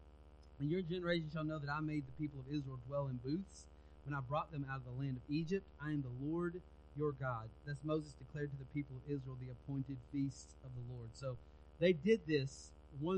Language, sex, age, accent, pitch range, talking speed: English, male, 30-49, American, 115-180 Hz, 230 wpm